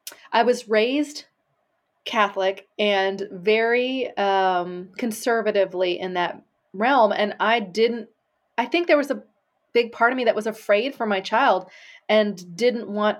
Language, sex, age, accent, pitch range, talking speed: English, female, 30-49, American, 200-265 Hz, 145 wpm